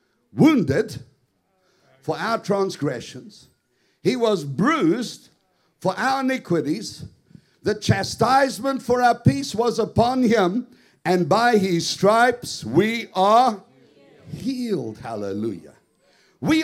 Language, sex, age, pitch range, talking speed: English, male, 60-79, 195-260 Hz, 95 wpm